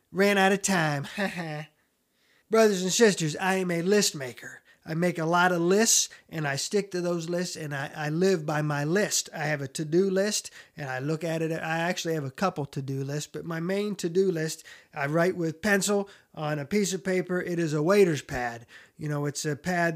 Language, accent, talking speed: English, American, 215 wpm